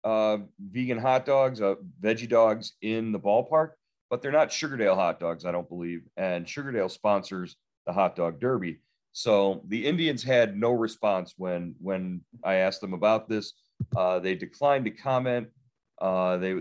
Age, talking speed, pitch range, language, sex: 40-59, 165 wpm, 95-125 Hz, English, male